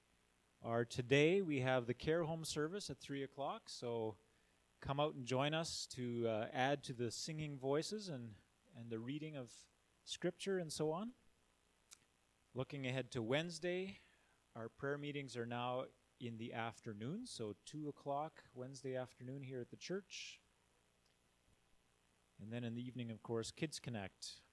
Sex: male